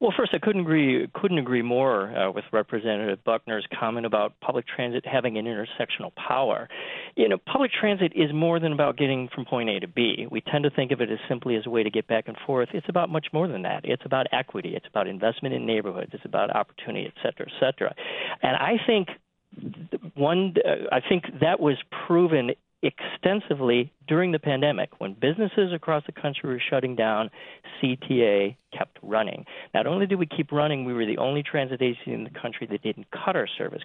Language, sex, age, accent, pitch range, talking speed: English, male, 40-59, American, 120-170 Hz, 205 wpm